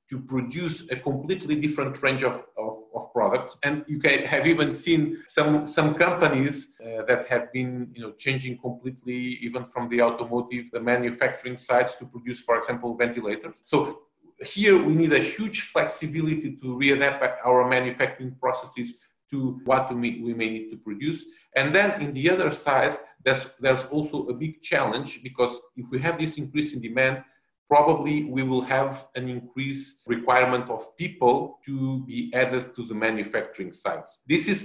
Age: 40-59